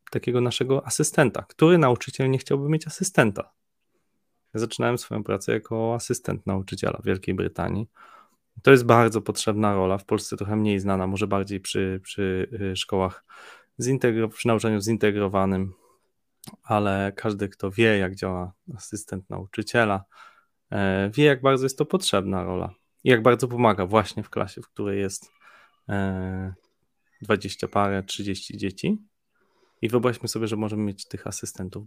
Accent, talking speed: native, 140 wpm